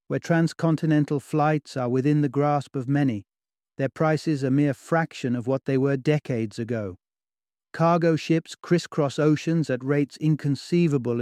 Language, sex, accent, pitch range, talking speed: English, male, British, 130-155 Hz, 145 wpm